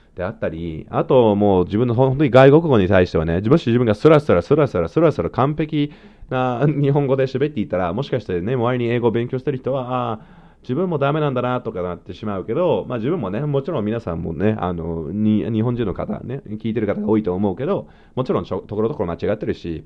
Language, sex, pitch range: Japanese, male, 100-150 Hz